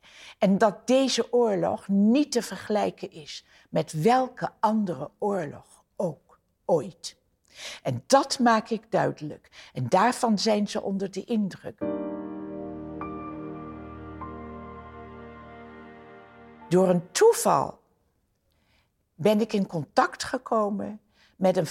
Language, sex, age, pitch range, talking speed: Dutch, female, 60-79, 165-230 Hz, 100 wpm